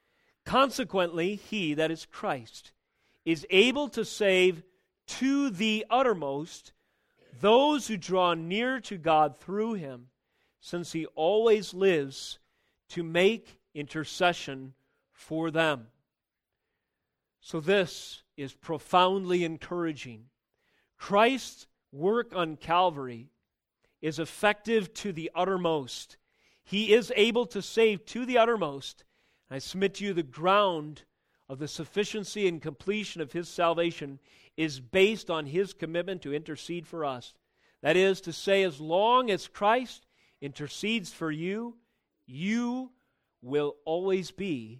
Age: 40-59